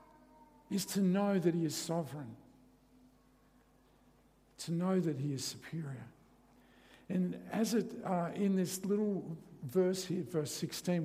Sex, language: male, English